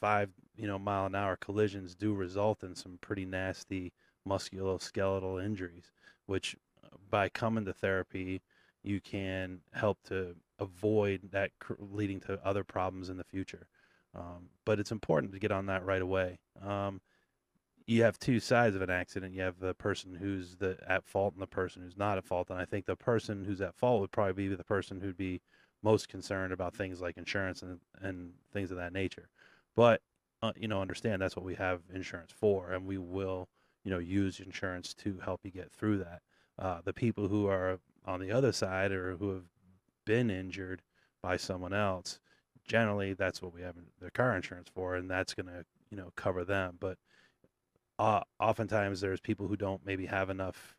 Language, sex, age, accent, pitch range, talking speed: English, male, 30-49, American, 90-100 Hz, 190 wpm